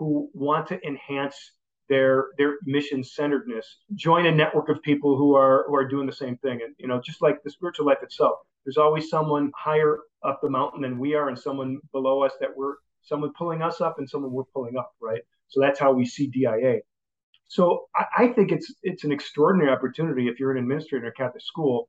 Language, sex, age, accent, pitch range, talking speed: English, male, 40-59, American, 135-155 Hz, 215 wpm